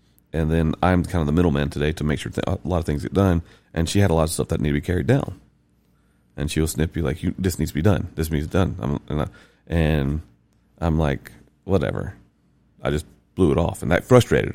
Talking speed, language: 255 wpm, English